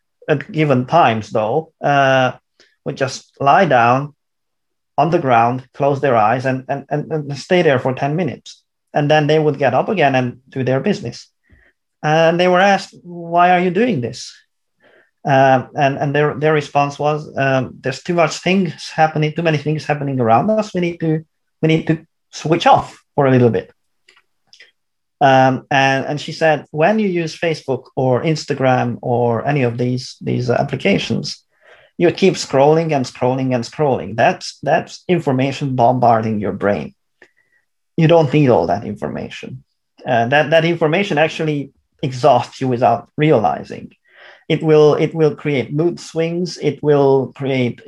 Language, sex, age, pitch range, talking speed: English, male, 30-49, 130-160 Hz, 160 wpm